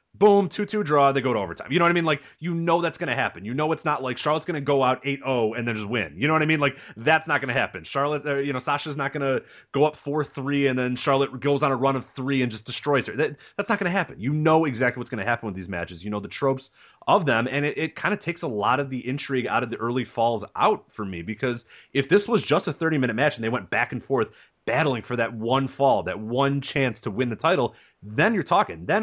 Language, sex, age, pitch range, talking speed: English, male, 30-49, 120-155 Hz, 295 wpm